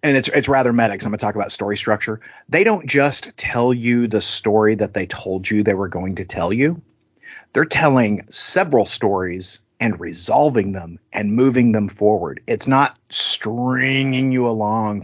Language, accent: English, American